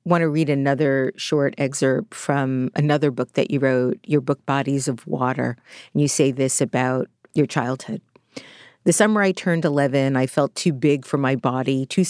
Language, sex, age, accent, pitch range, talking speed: English, female, 50-69, American, 135-155 Hz, 185 wpm